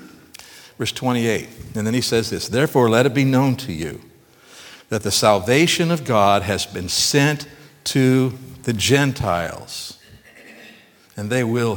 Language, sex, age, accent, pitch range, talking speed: English, male, 60-79, American, 110-170 Hz, 145 wpm